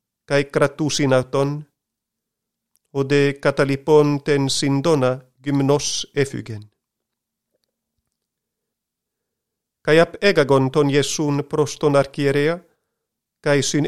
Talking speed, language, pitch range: 75 wpm, Greek, 130-150 Hz